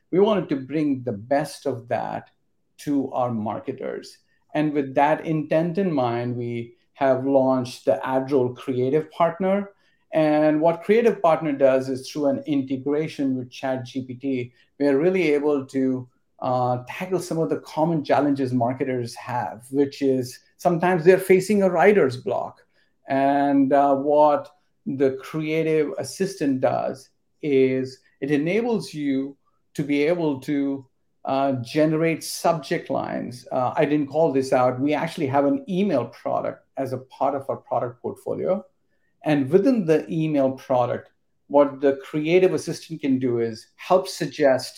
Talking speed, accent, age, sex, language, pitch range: 145 wpm, Indian, 50-69, male, English, 130-160 Hz